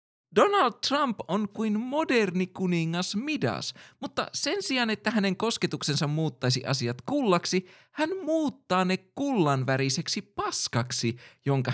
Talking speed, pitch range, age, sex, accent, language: 115 wpm, 115-175 Hz, 20-39, male, native, Finnish